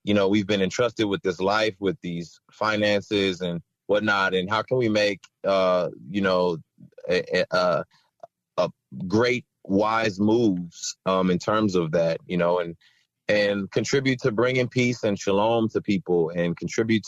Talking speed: 160 wpm